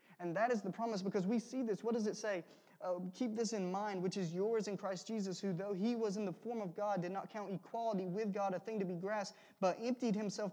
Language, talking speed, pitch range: English, 270 wpm, 175-210 Hz